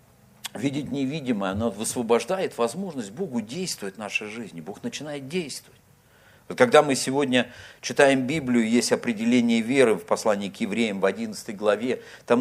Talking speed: 145 wpm